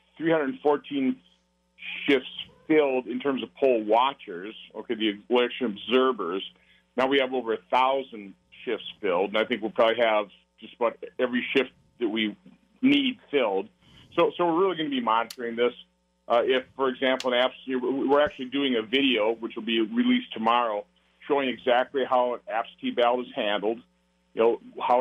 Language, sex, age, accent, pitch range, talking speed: English, male, 50-69, American, 110-135 Hz, 165 wpm